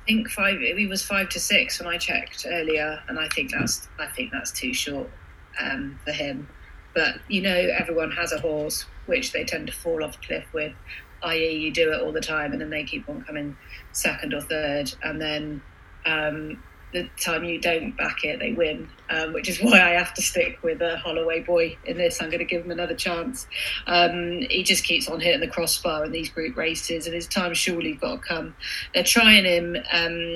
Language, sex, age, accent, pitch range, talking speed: English, female, 30-49, British, 165-180 Hz, 220 wpm